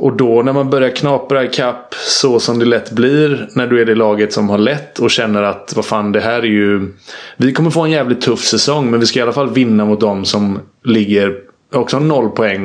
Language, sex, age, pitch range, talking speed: Swedish, male, 20-39, 100-125 Hz, 245 wpm